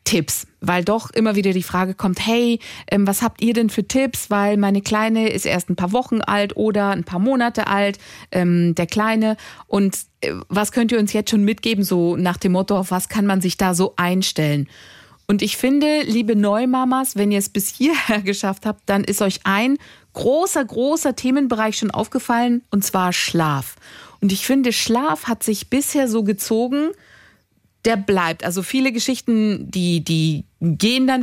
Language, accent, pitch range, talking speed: German, German, 195-260 Hz, 175 wpm